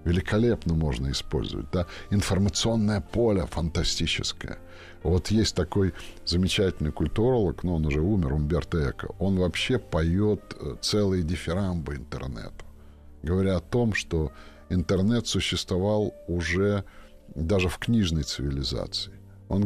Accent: native